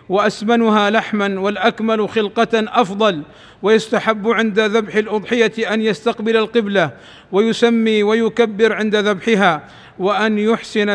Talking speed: 100 wpm